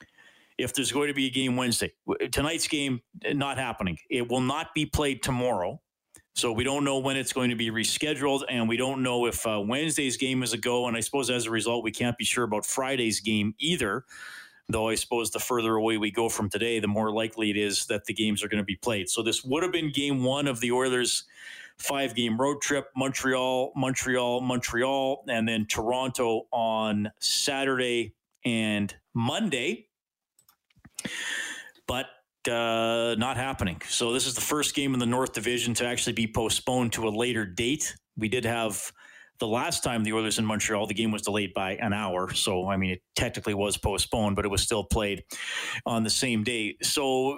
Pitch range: 110-130 Hz